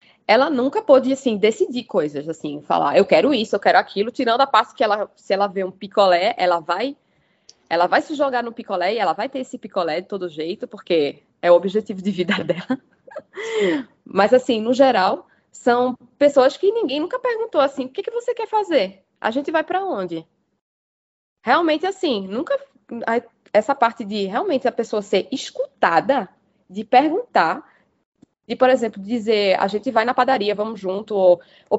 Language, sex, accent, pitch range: Portuguese, female, Brazilian, 200-275 Hz